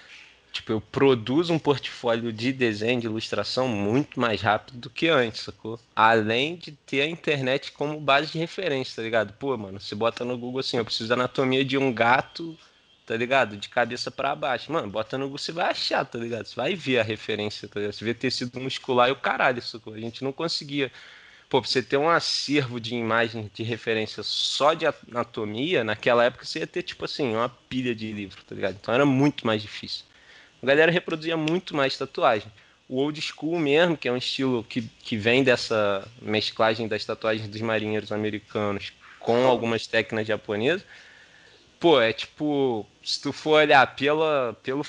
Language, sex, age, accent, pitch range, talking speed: Portuguese, male, 20-39, Brazilian, 110-140 Hz, 190 wpm